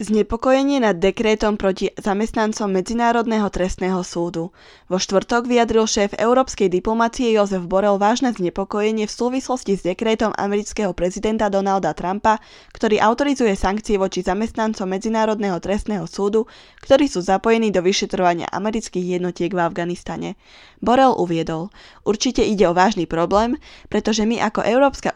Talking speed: 130 wpm